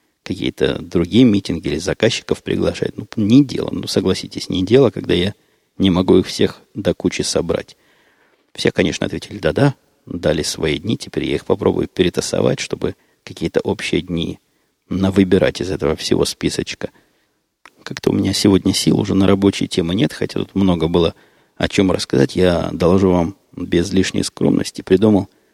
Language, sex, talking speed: Russian, male, 160 wpm